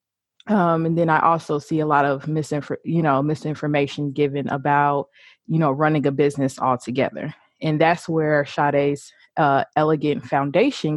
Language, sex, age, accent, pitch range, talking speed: English, female, 20-39, American, 140-155 Hz, 155 wpm